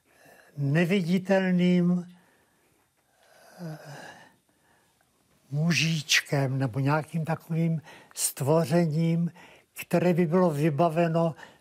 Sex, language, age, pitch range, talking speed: male, Czech, 60-79, 155-175 Hz, 50 wpm